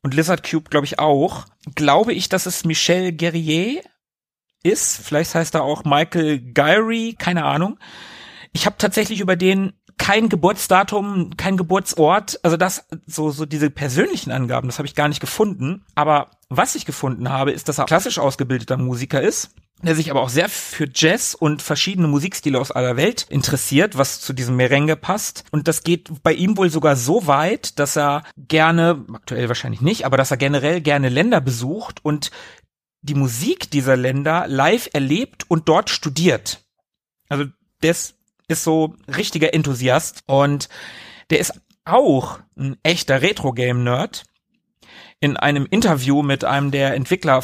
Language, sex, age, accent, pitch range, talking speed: German, male, 40-59, German, 135-170 Hz, 160 wpm